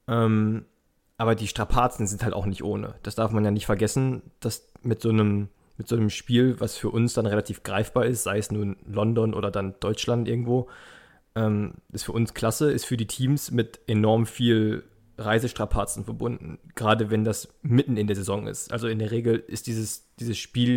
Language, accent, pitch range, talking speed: German, German, 105-120 Hz, 190 wpm